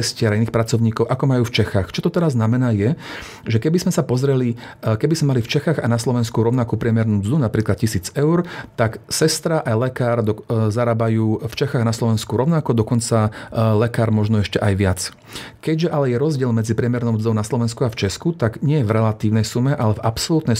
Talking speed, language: 200 wpm, Slovak